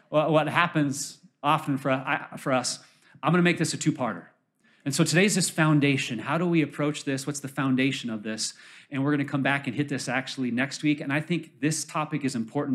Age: 30-49